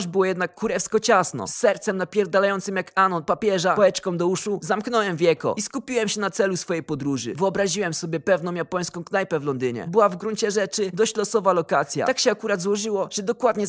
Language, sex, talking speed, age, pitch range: Polish, male, 185 wpm, 20-39, 175-225 Hz